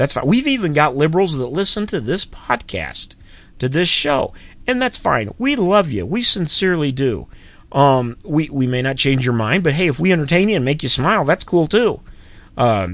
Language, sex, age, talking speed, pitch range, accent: English, male, 40-59, 210 wpm, 100-140 Hz, American